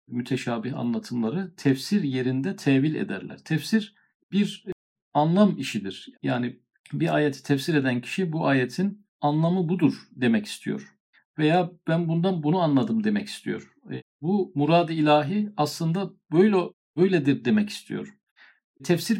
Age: 50-69